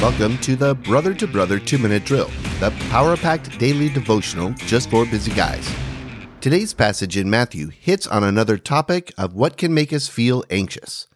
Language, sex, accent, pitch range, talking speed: English, male, American, 105-145 Hz, 165 wpm